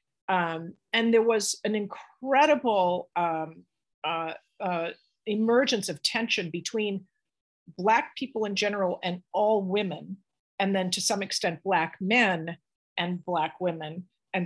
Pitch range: 180-230 Hz